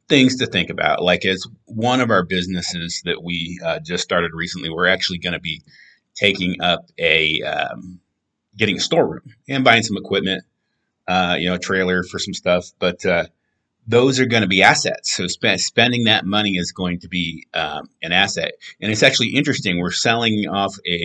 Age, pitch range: 30-49, 90-105 Hz